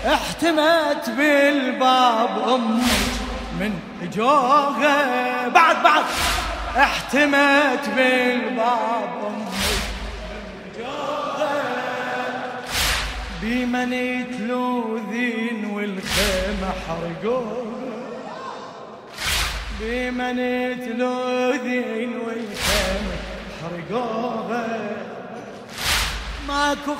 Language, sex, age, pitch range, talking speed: Arabic, male, 30-49, 225-280 Hz, 50 wpm